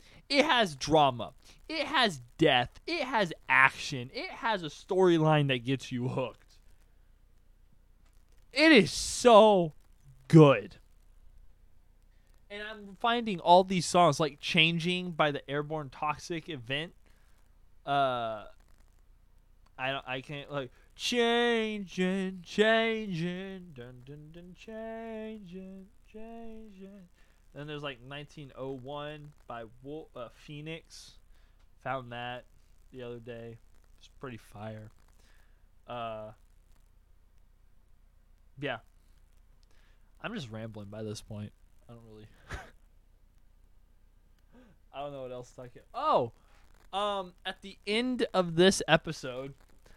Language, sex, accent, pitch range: English, male, American, 105-175 Hz